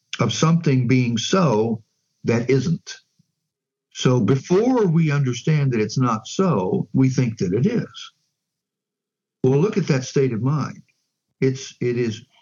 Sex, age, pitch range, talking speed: male, 60-79, 120-160 Hz, 145 wpm